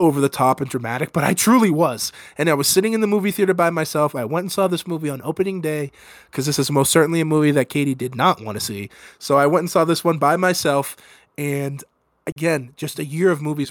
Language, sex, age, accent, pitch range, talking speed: English, male, 20-39, American, 125-155 Hz, 255 wpm